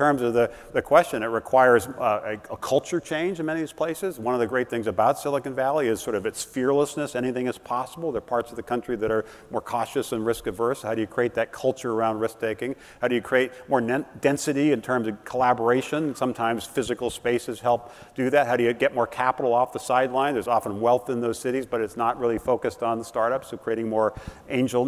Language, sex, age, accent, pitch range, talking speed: English, male, 50-69, American, 115-135 Hz, 235 wpm